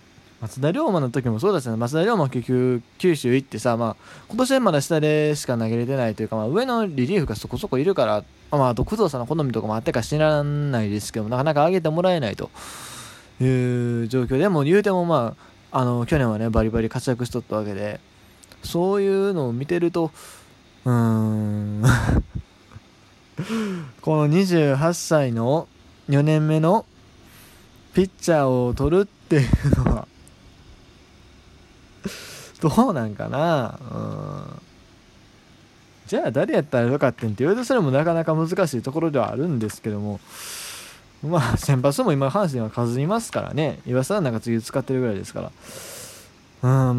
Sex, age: male, 20-39